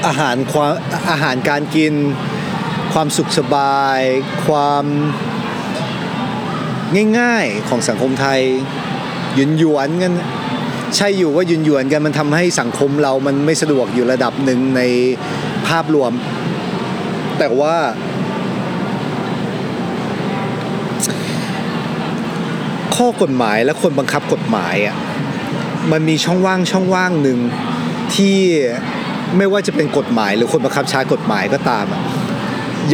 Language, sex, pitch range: Thai, male, 140-190 Hz